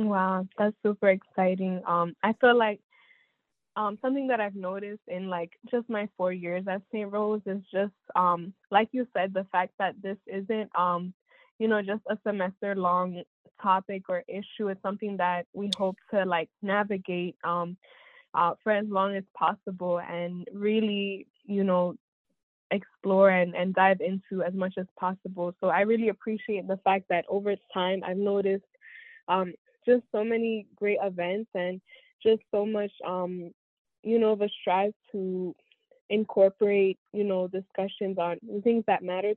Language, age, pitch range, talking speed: English, 10-29, 180-210 Hz, 160 wpm